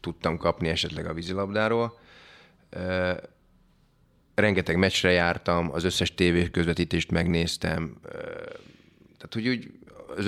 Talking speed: 95 wpm